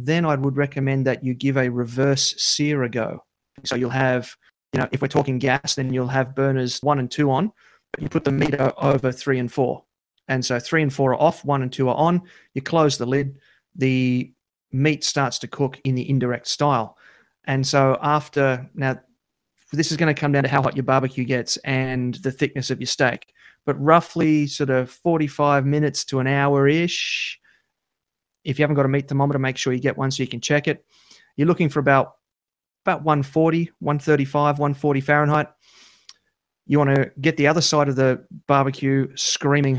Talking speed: 200 wpm